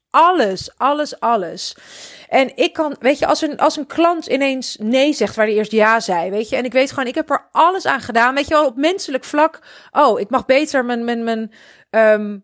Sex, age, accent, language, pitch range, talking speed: female, 30-49, Dutch, Dutch, 215-285 Hz, 225 wpm